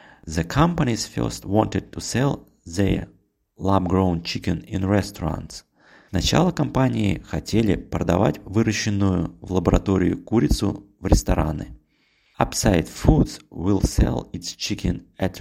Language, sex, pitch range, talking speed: Russian, male, 85-105 Hz, 110 wpm